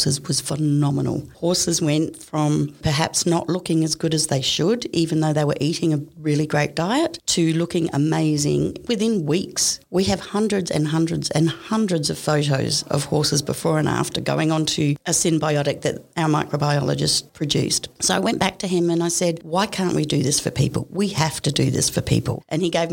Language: English